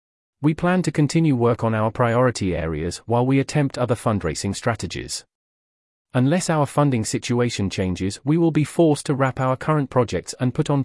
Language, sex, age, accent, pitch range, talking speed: English, male, 30-49, British, 110-140 Hz, 175 wpm